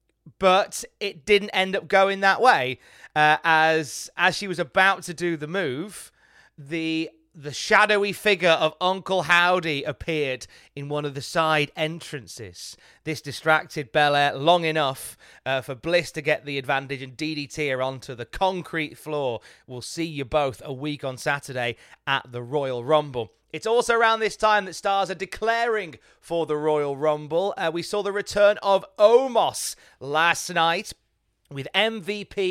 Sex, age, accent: male, 30-49, British